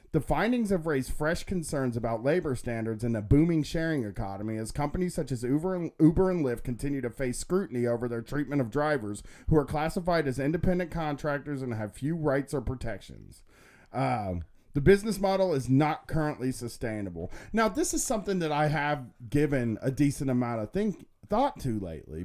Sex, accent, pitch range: male, American, 120-155 Hz